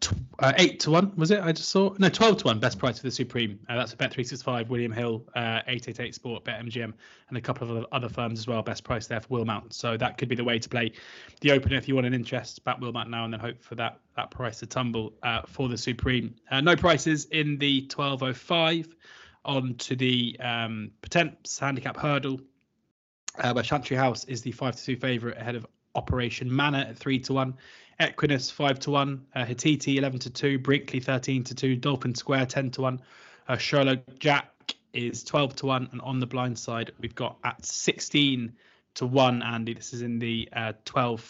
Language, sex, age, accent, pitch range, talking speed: English, male, 20-39, British, 120-135 Hz, 210 wpm